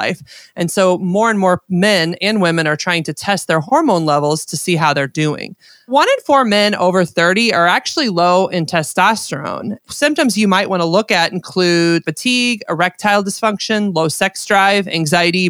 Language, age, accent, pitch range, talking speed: English, 30-49, American, 170-225 Hz, 180 wpm